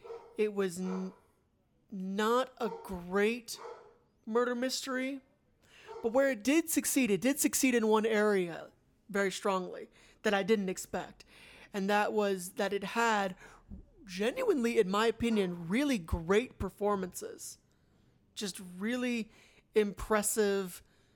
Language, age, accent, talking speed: English, 30-49, American, 115 wpm